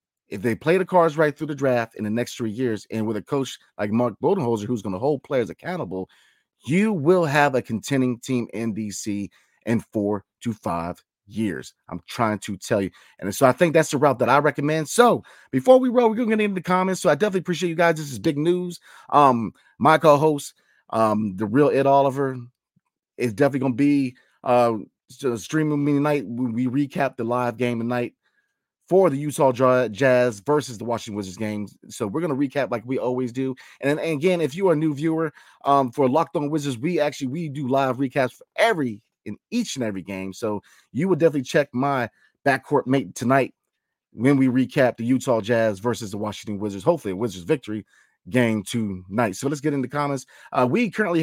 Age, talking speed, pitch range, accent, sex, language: 30-49, 205 wpm, 115-150 Hz, American, male, English